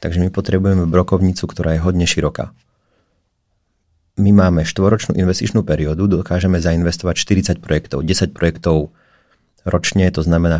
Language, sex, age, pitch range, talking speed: Czech, male, 30-49, 80-95 Hz, 125 wpm